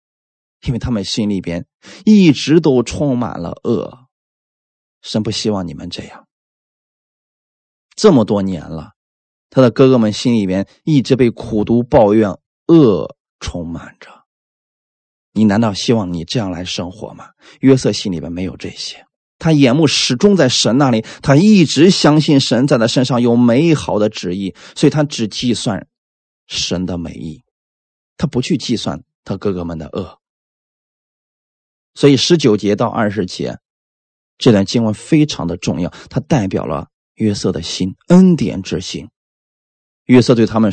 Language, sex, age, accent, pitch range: Chinese, male, 20-39, native, 90-140 Hz